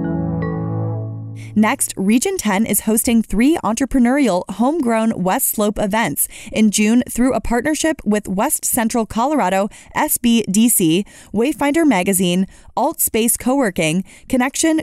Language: English